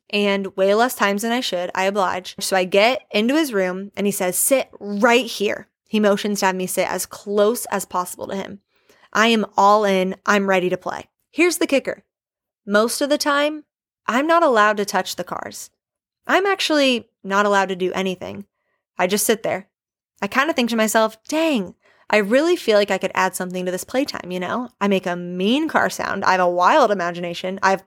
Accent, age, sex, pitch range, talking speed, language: American, 20-39, female, 190-240 Hz, 215 wpm, English